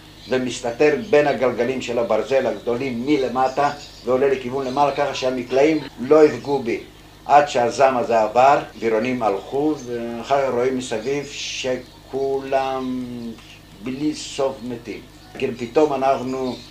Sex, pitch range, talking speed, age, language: male, 120-140 Hz, 115 wpm, 50-69, Hebrew